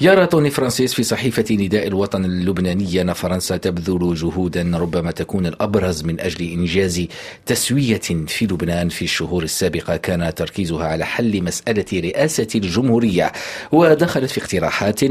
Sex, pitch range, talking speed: male, 85-110 Hz, 130 wpm